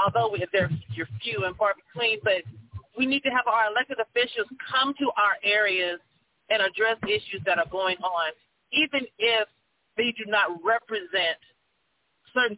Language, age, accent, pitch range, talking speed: English, 40-59, American, 190-235 Hz, 155 wpm